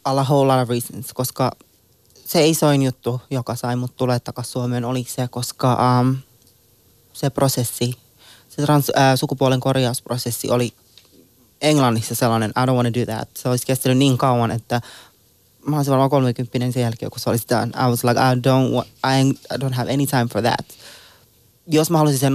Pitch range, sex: 120-135 Hz, male